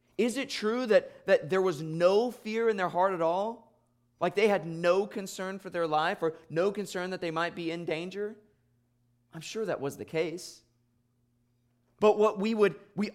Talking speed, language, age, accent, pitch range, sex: 185 wpm, English, 20-39, American, 120-180 Hz, male